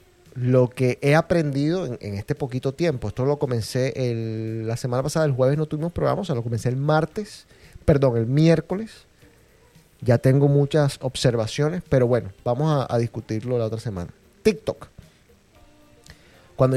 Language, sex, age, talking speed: Spanish, male, 30-49, 160 wpm